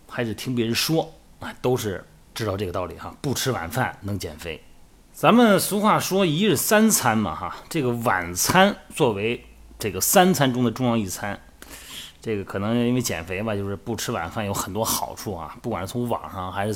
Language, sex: Chinese, male